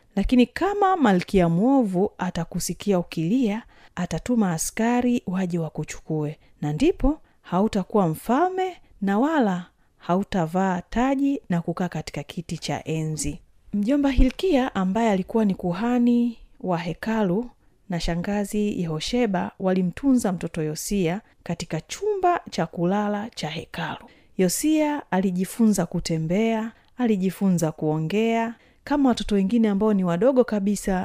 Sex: female